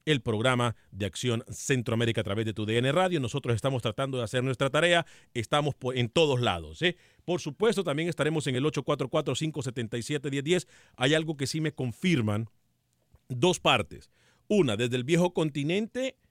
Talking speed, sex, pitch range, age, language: 155 wpm, male, 125-175 Hz, 40-59, Spanish